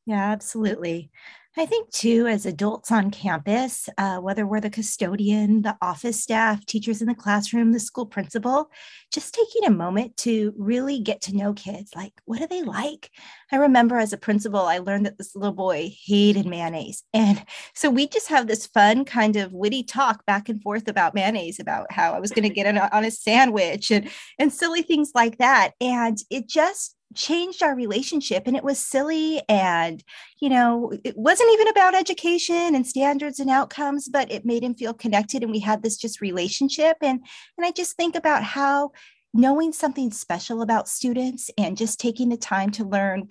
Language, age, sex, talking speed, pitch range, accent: English, 30-49, female, 190 wpm, 210-275 Hz, American